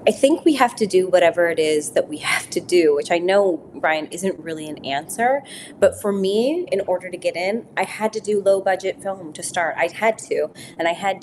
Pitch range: 170-200 Hz